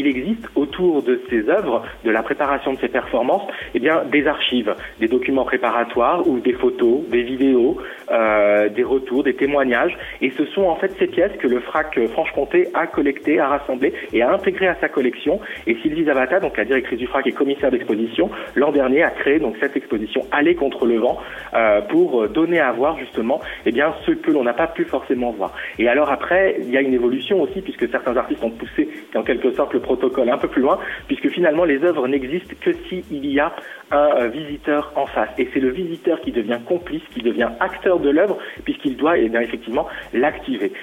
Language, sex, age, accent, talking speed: French, male, 40-59, French, 210 wpm